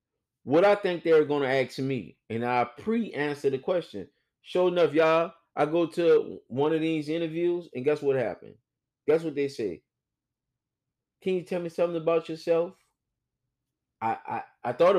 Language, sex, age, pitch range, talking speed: English, male, 30-49, 130-165 Hz, 170 wpm